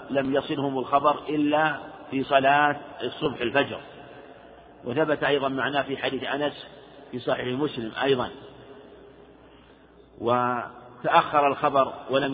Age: 50-69